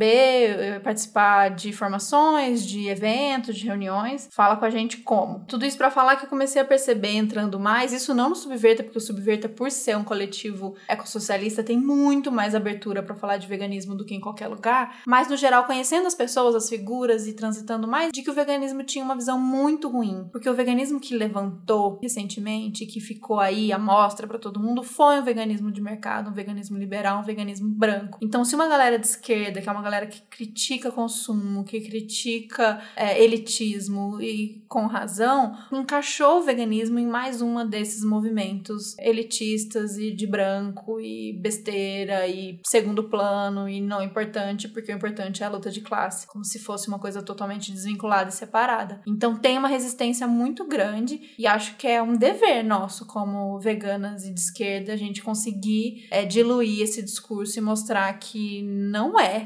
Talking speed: 180 wpm